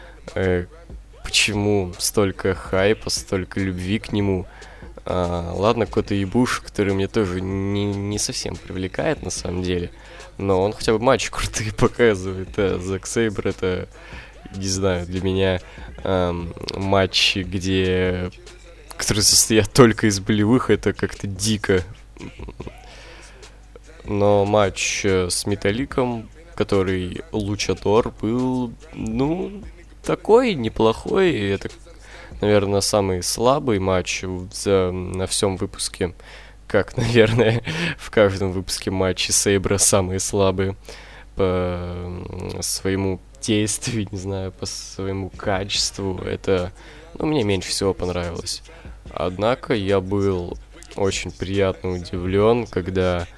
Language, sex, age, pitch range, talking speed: Russian, male, 20-39, 95-105 Hz, 110 wpm